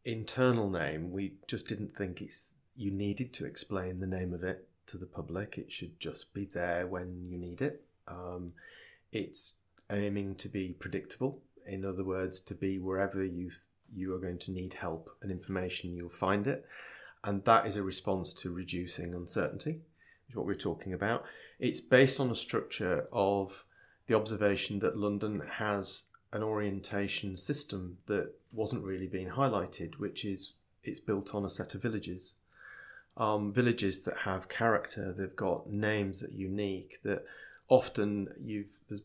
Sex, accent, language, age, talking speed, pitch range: male, British, English, 30-49, 165 wpm, 95-115 Hz